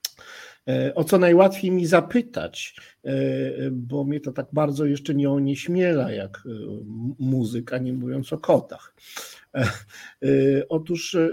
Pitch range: 135-165 Hz